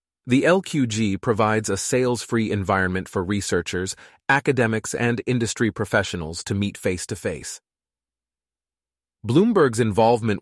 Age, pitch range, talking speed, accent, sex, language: 30-49, 95-120 Hz, 100 wpm, American, male, English